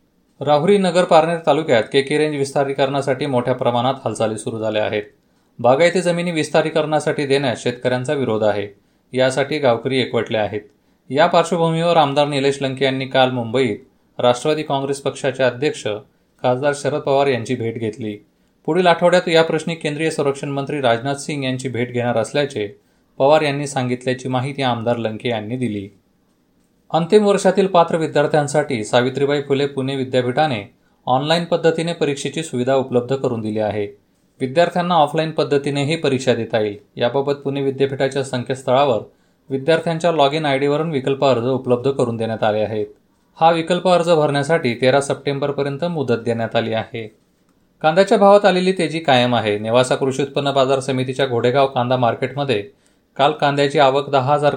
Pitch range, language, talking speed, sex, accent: 125-150 Hz, Marathi, 145 wpm, male, native